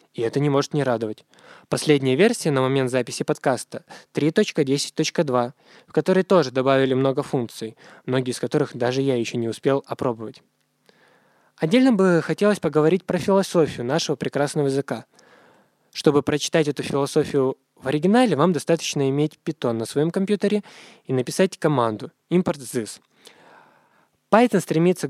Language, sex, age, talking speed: Russian, male, 20-39, 140 wpm